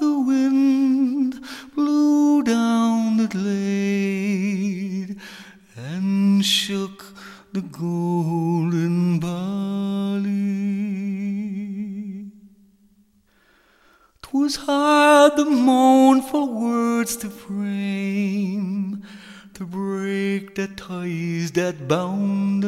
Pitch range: 195-265 Hz